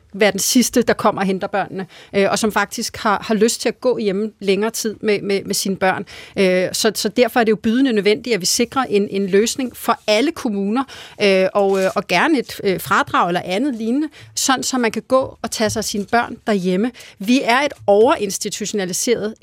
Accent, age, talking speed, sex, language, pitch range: native, 30-49, 200 wpm, female, Danish, 205-255 Hz